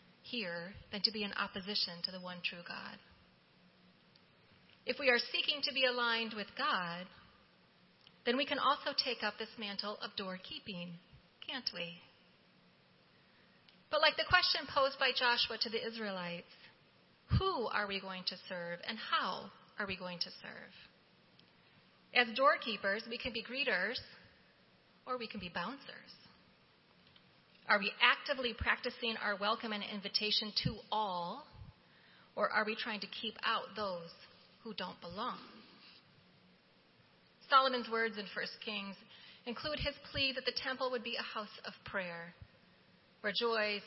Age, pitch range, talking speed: 30-49, 190-245 Hz, 145 wpm